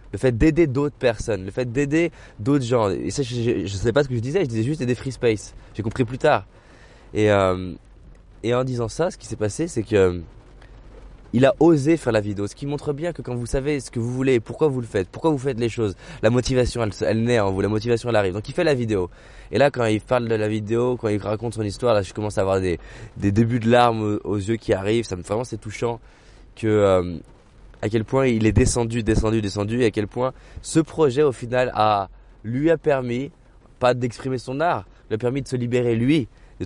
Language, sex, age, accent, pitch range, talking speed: French, male, 20-39, French, 110-135 Hz, 245 wpm